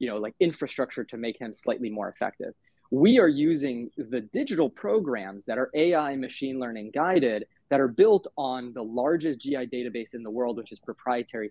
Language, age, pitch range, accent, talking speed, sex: English, 20-39, 120-155 Hz, American, 190 wpm, male